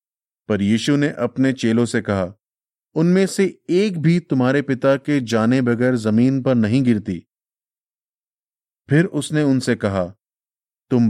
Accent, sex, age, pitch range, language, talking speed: native, male, 30-49, 115-145 Hz, Hindi, 135 wpm